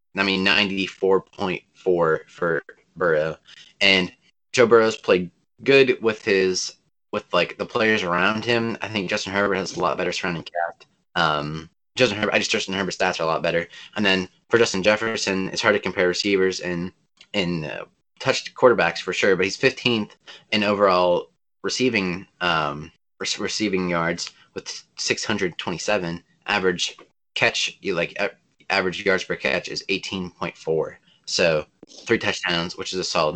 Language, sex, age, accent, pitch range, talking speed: English, male, 20-39, American, 85-105 Hz, 165 wpm